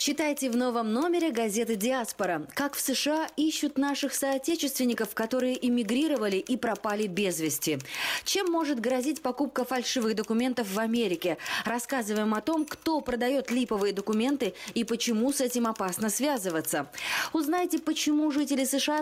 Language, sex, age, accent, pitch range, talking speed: Russian, female, 20-39, native, 195-280 Hz, 135 wpm